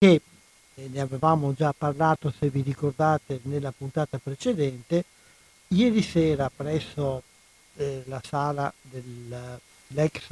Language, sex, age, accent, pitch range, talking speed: Italian, male, 60-79, native, 135-155 Hz, 105 wpm